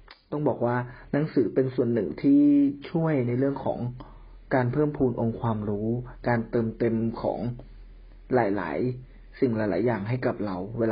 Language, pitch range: Thai, 110-130 Hz